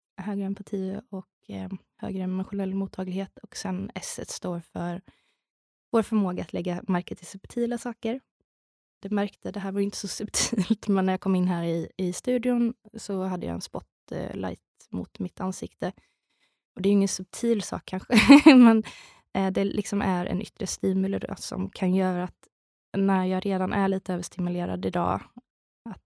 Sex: female